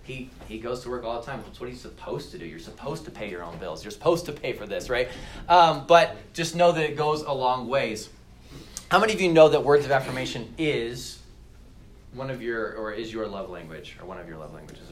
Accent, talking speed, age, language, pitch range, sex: American, 250 wpm, 20-39, English, 115-165 Hz, male